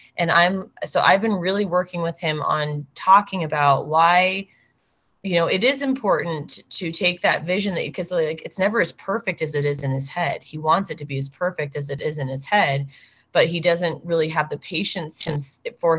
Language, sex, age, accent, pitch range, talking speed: English, female, 20-39, American, 145-180 Hz, 210 wpm